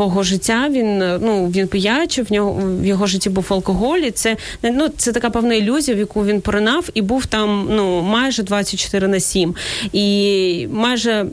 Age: 30-49